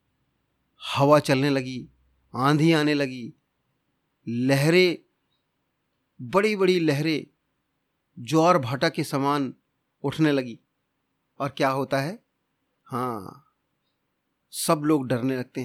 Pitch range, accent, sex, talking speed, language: 135-170 Hz, native, male, 95 wpm, Hindi